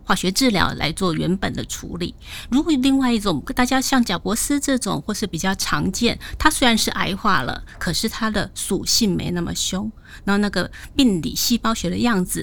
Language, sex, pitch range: Chinese, female, 175-235 Hz